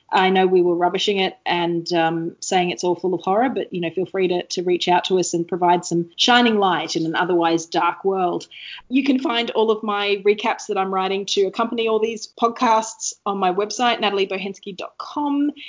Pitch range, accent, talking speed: 170-220 Hz, Australian, 205 wpm